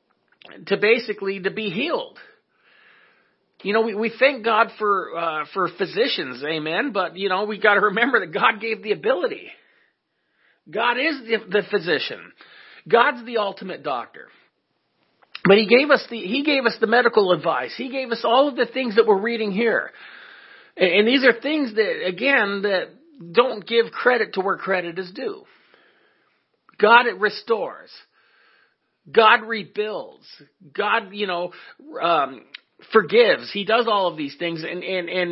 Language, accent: English, American